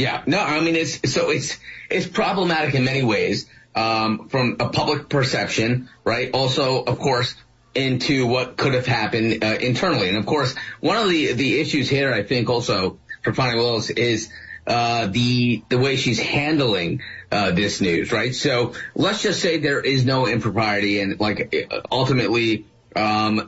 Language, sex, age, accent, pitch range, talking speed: English, male, 30-49, American, 115-135 Hz, 170 wpm